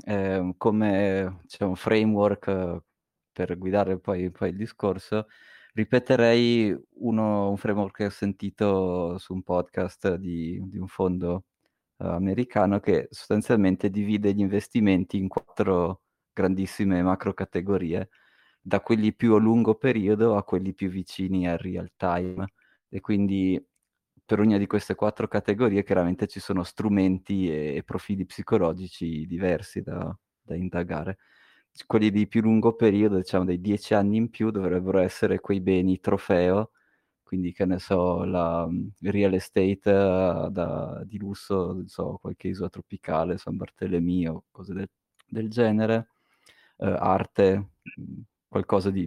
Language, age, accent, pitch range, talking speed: Italian, 20-39, native, 90-105 Hz, 135 wpm